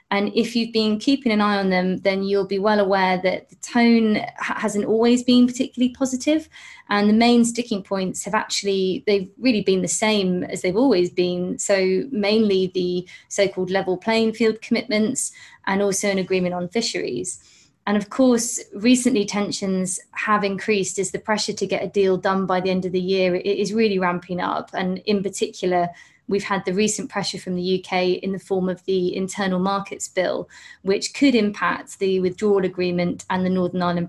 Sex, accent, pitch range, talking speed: female, British, 185-225 Hz, 185 wpm